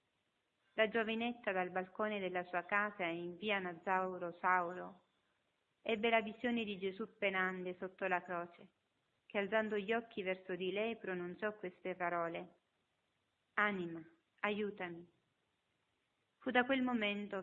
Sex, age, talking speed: female, 40-59, 120 wpm